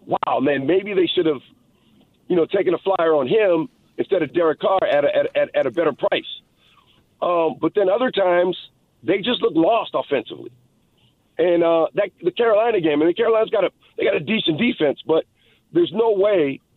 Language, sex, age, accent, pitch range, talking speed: English, male, 50-69, American, 150-220 Hz, 200 wpm